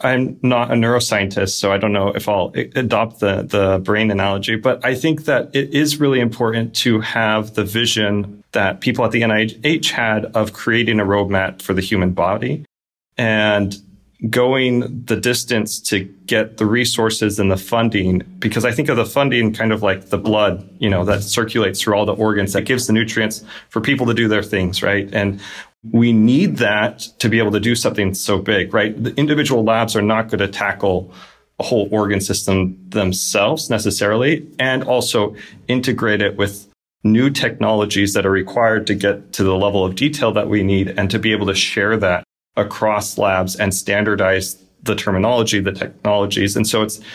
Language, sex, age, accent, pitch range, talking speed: English, male, 30-49, American, 100-115 Hz, 185 wpm